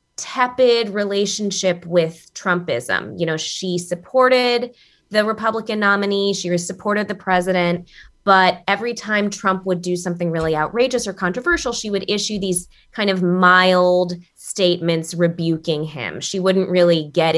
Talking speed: 140 wpm